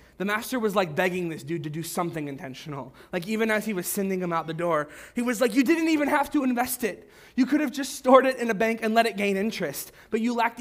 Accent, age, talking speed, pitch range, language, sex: American, 20-39, 270 wpm, 155-210 Hz, English, male